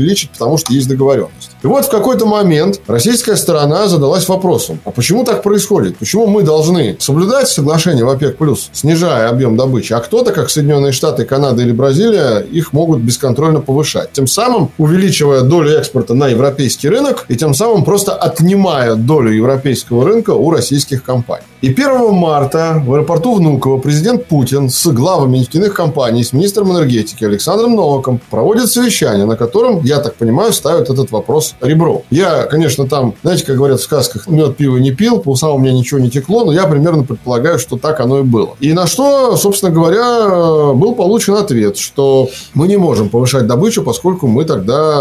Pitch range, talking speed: 130-175 Hz, 175 wpm